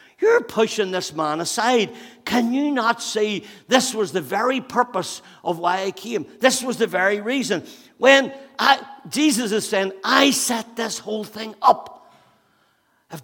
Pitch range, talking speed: 140-230 Hz, 155 wpm